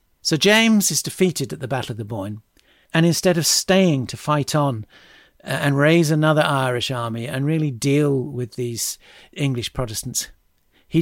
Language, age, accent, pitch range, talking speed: English, 50-69, British, 120-155 Hz, 165 wpm